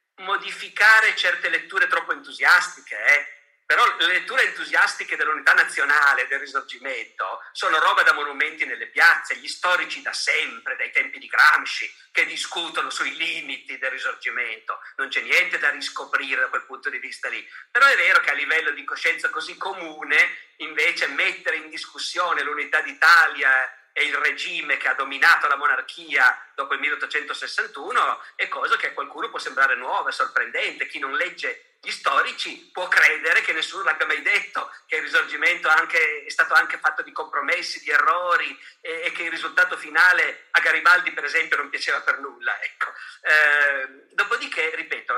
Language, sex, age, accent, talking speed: Italian, male, 50-69, native, 160 wpm